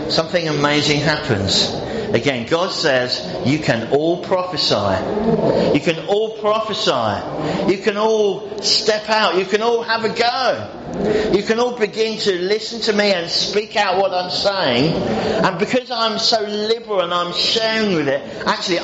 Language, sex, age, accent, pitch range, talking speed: English, male, 50-69, British, 170-210 Hz, 160 wpm